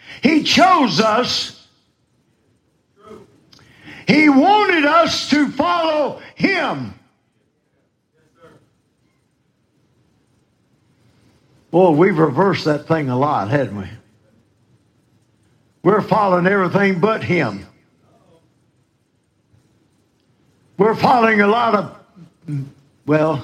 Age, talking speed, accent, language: 60-79, 75 wpm, American, English